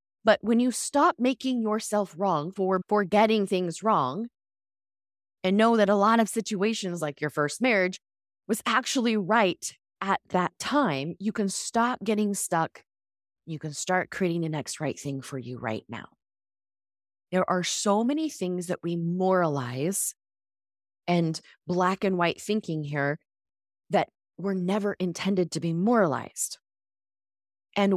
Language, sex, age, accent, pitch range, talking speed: English, female, 20-39, American, 150-220 Hz, 145 wpm